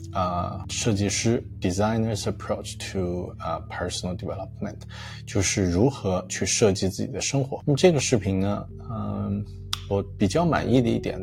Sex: male